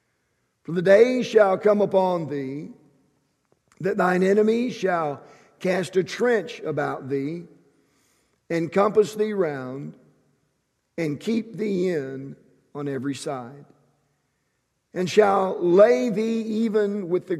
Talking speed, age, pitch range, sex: 115 wpm, 50-69, 145-200 Hz, male